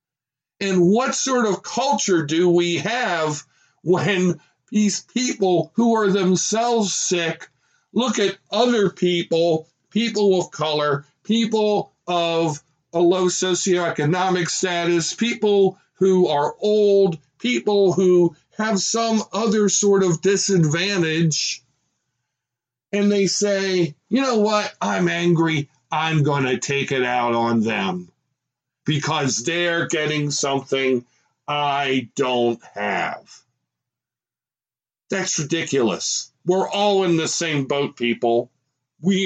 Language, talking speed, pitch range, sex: English, 110 wpm, 140-190 Hz, male